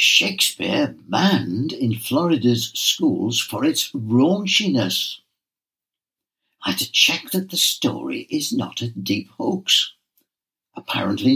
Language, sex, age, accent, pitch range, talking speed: English, male, 60-79, British, 110-180 Hz, 110 wpm